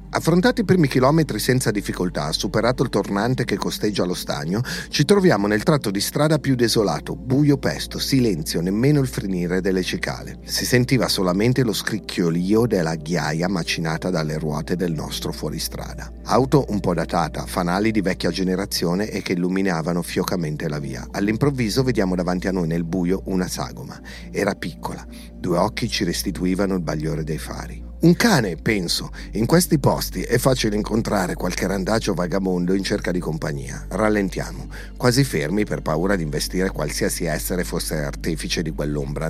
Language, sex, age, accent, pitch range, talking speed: Italian, male, 40-59, native, 90-130 Hz, 160 wpm